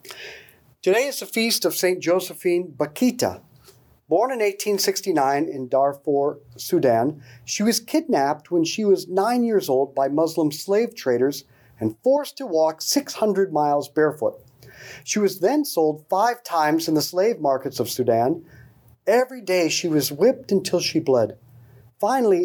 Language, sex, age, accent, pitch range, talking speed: English, male, 40-59, American, 150-215 Hz, 145 wpm